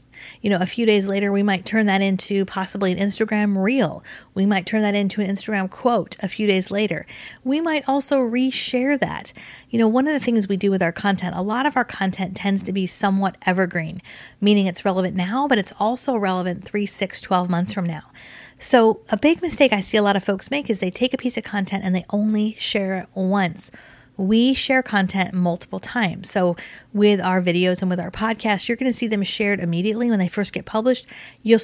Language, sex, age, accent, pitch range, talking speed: English, female, 30-49, American, 190-225 Hz, 220 wpm